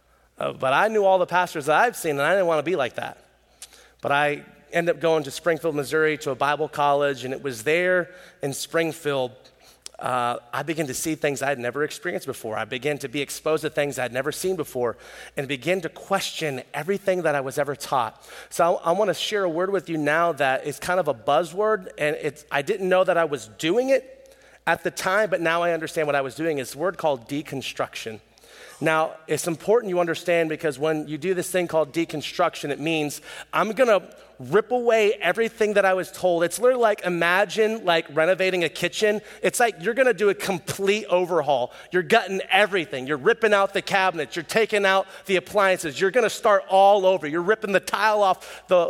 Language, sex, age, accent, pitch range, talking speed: English, male, 30-49, American, 150-195 Hz, 220 wpm